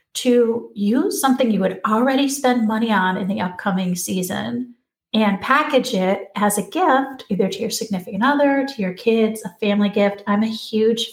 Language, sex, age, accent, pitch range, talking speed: English, female, 30-49, American, 195-250 Hz, 180 wpm